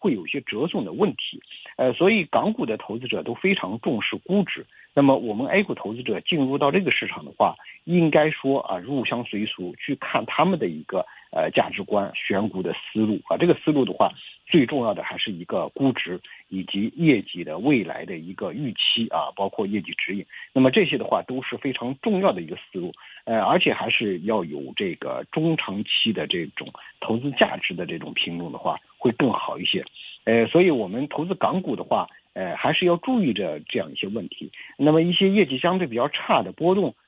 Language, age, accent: Chinese, 50-69, native